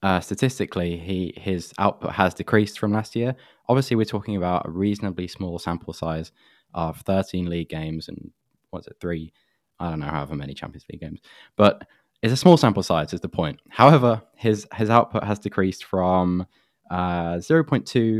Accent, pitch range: British, 85-110 Hz